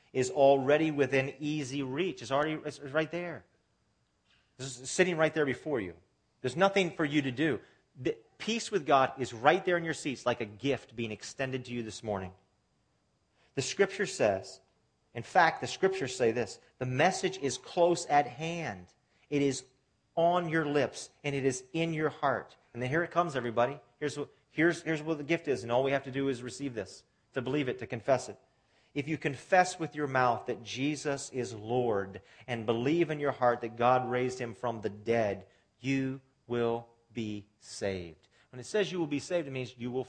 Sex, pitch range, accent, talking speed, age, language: male, 115-145 Hz, American, 200 wpm, 40-59, English